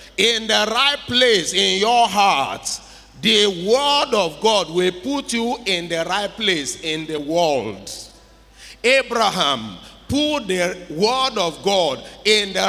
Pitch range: 170-225 Hz